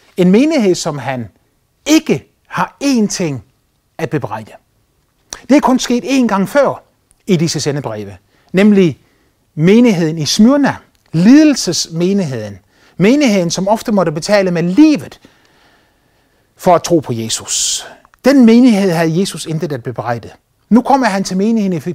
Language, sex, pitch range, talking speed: Danish, male, 140-205 Hz, 140 wpm